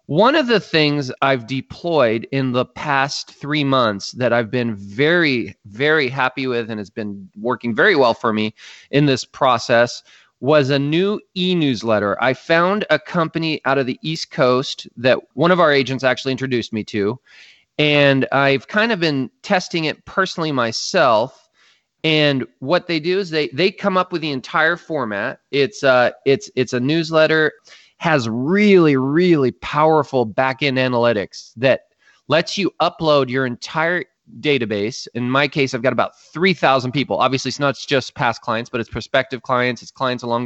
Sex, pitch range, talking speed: male, 125-160 Hz, 170 wpm